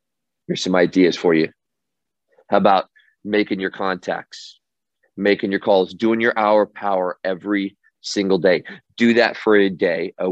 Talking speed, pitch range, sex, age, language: 150 wpm, 95-115 Hz, male, 40-59, English